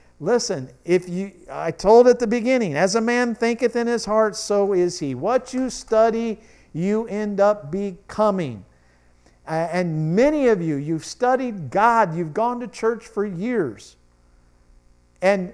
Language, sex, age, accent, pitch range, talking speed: English, male, 50-69, American, 150-225 Hz, 150 wpm